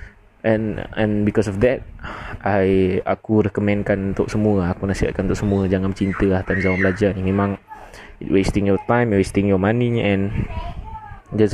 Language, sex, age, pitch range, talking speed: Malay, male, 20-39, 100-110 Hz, 160 wpm